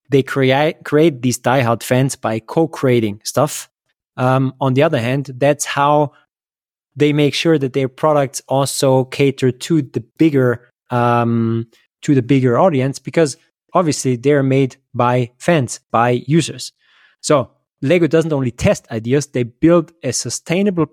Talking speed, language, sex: 145 wpm, English, male